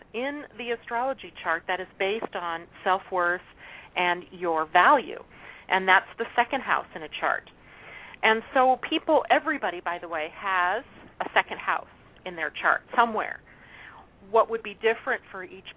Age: 40-59